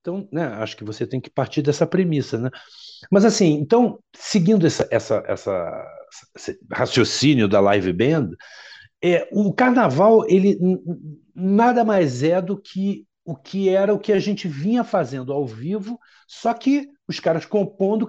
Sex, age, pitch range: male, 60-79, 130-185 Hz